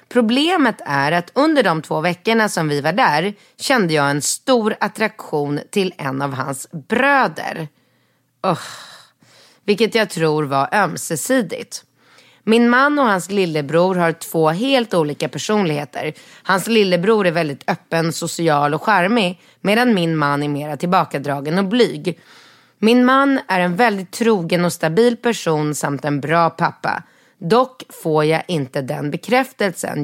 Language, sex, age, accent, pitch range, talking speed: Swedish, female, 30-49, native, 150-220 Hz, 145 wpm